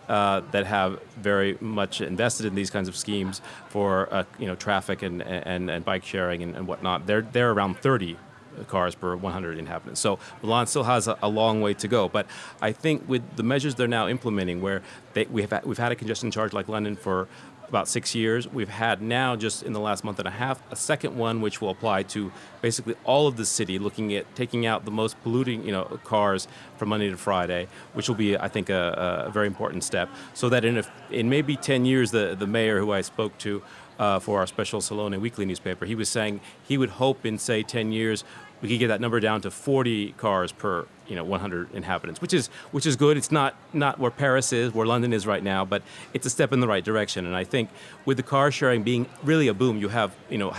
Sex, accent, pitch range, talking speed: male, American, 100-125 Hz, 235 wpm